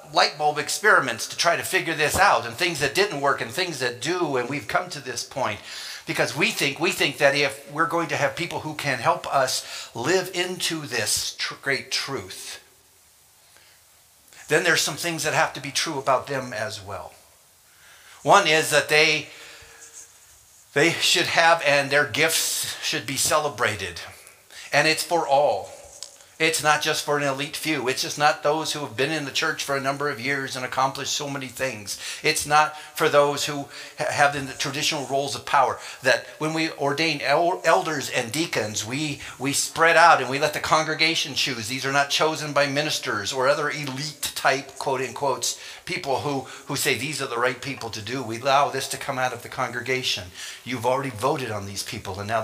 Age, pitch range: 50-69, 130-155 Hz